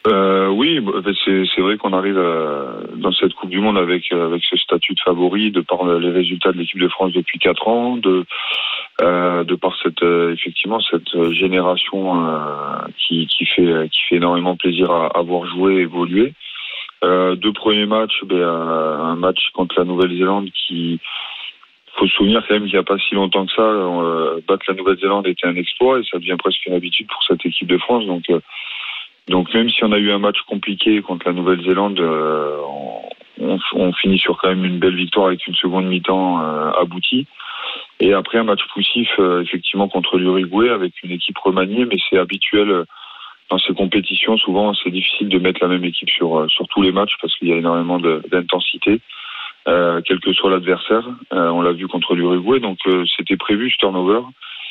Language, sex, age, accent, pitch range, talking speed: French, male, 20-39, French, 90-95 Hz, 190 wpm